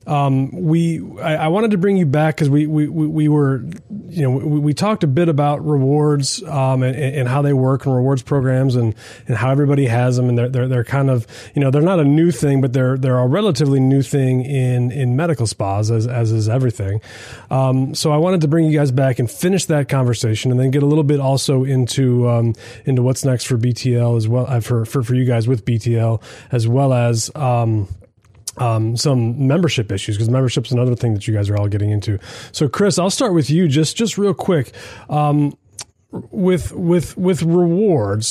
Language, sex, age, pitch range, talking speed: English, male, 30-49, 120-150 Hz, 215 wpm